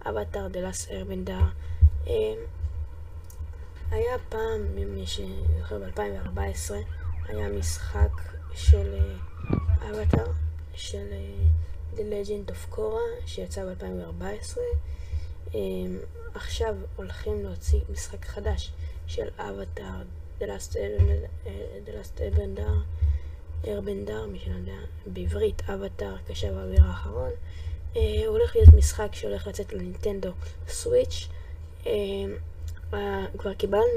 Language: Hebrew